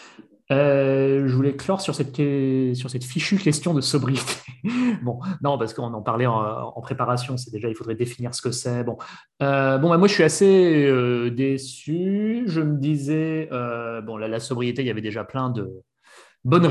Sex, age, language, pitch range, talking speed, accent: male, 30-49, French, 120-145 Hz, 200 wpm, French